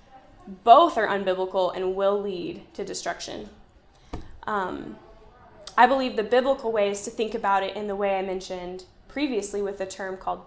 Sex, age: female, 10-29